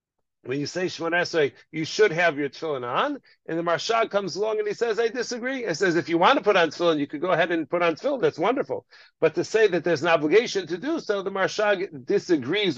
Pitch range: 145-195 Hz